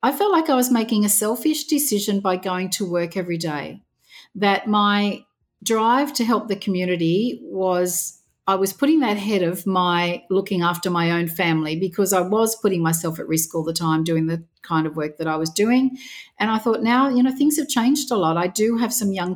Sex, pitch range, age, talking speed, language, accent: female, 180-225 Hz, 40-59, 215 wpm, English, Australian